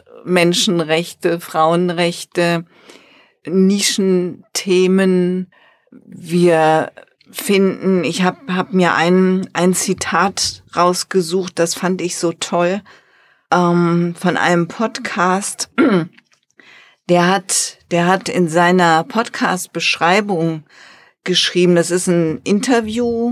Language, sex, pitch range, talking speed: German, female, 170-210 Hz, 85 wpm